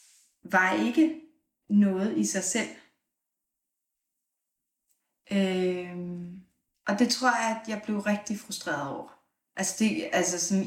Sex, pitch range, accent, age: female, 170-205 Hz, native, 30-49